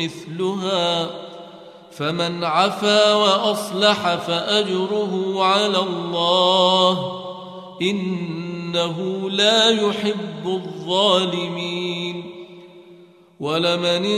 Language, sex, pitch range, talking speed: Arabic, male, 175-200 Hz, 50 wpm